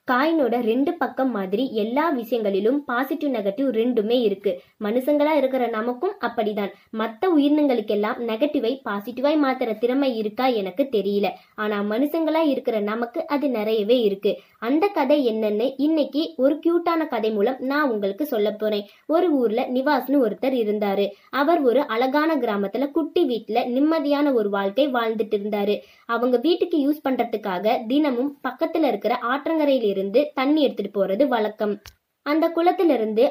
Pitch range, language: 220-290 Hz, Tamil